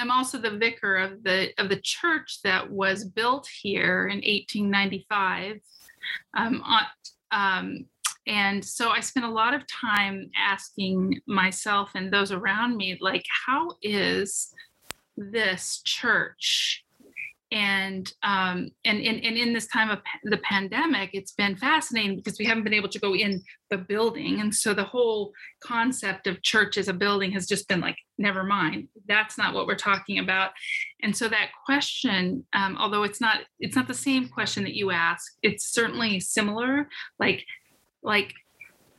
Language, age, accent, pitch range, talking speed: English, 30-49, American, 195-235 Hz, 155 wpm